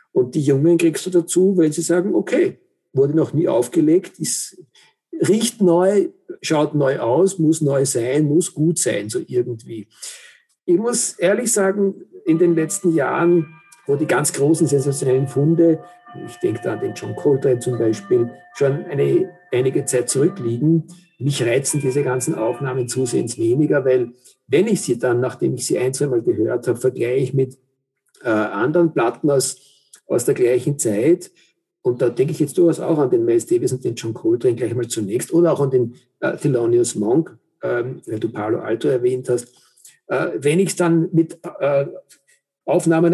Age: 50-69